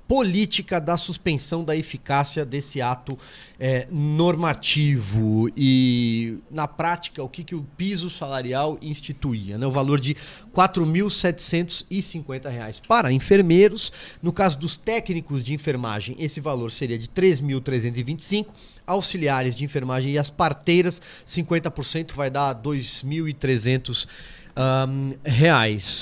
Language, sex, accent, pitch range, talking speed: Portuguese, male, Brazilian, 130-175 Hz, 120 wpm